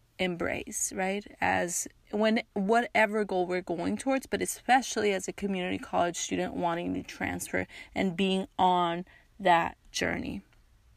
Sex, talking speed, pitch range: female, 130 wpm, 185-230 Hz